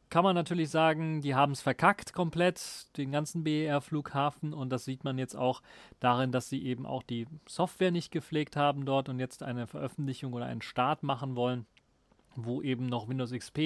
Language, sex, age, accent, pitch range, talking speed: German, male, 30-49, German, 125-145 Hz, 190 wpm